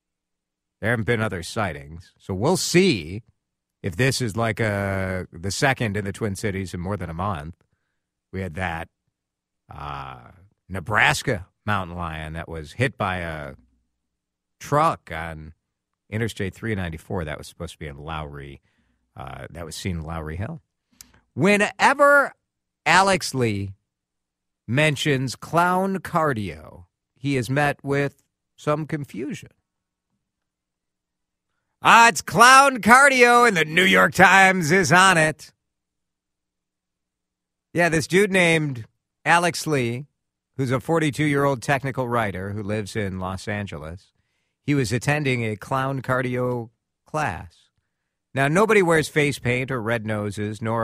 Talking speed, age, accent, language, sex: 130 wpm, 50-69, American, English, male